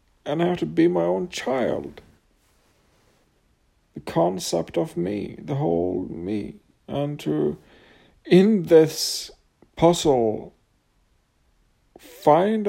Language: English